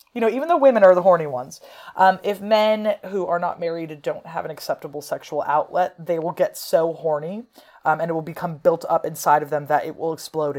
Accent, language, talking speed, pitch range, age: American, English, 230 wpm, 145-175 Hz, 30-49